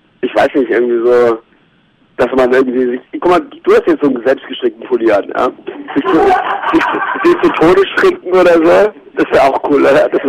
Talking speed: 210 wpm